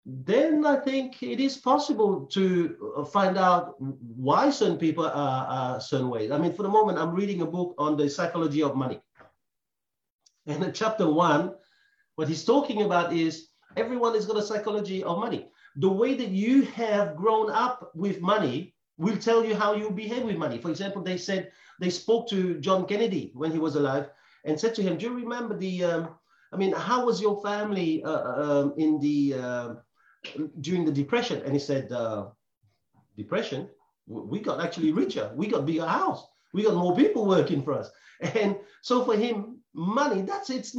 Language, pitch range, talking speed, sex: English, 160-230 Hz, 180 wpm, male